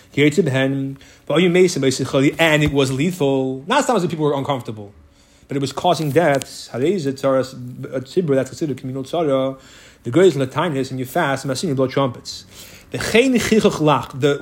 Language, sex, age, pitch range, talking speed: English, male, 30-49, 135-185 Hz, 110 wpm